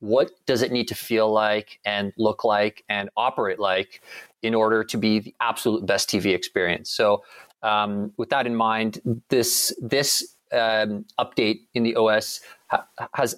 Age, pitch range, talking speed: 40-59, 105-120 Hz, 160 wpm